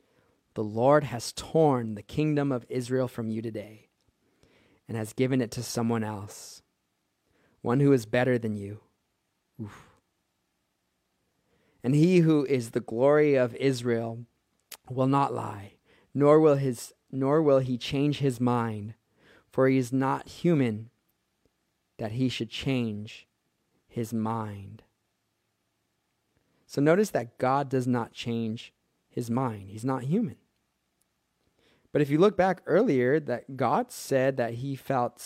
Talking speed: 135 wpm